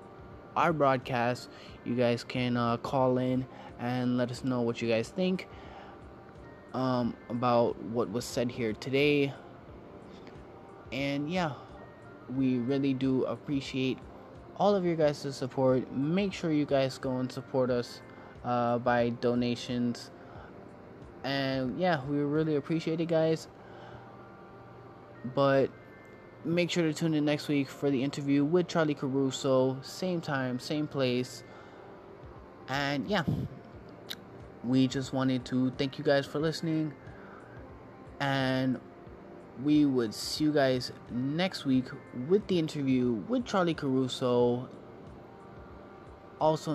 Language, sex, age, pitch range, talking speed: English, male, 20-39, 125-145 Hz, 125 wpm